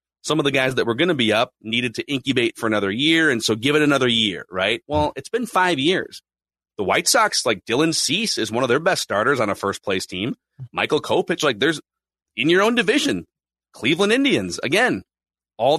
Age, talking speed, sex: 30-49, 215 wpm, male